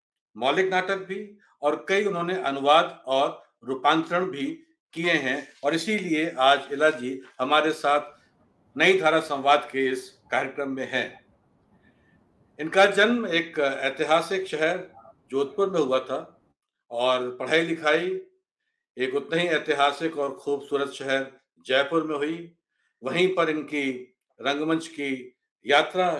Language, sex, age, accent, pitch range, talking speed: Hindi, male, 50-69, native, 140-180 Hz, 125 wpm